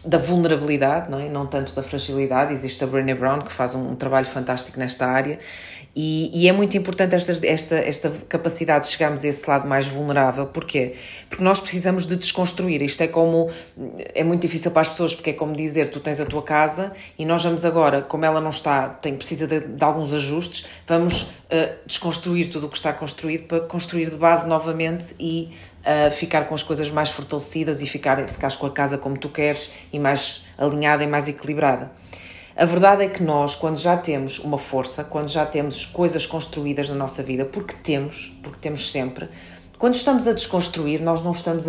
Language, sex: Portuguese, female